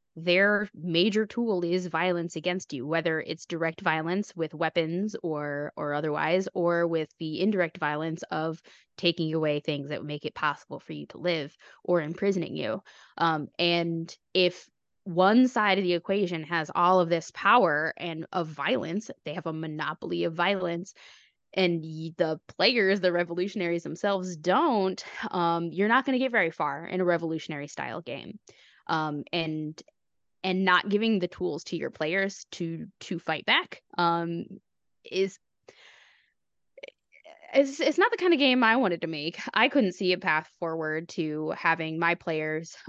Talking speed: 160 wpm